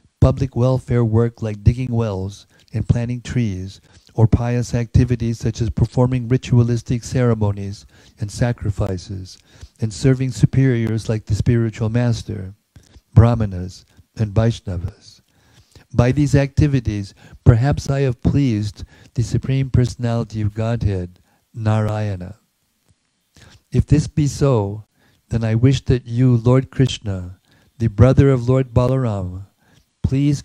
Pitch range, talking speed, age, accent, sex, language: 105-130 Hz, 115 wpm, 50-69, American, male, English